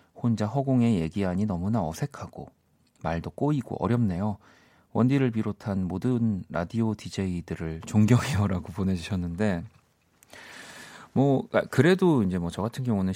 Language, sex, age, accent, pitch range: Korean, male, 40-59, native, 95-125 Hz